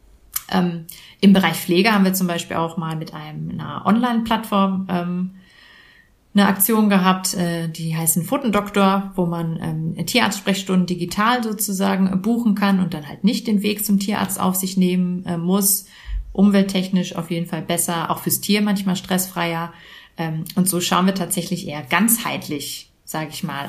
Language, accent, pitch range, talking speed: German, German, 170-200 Hz, 165 wpm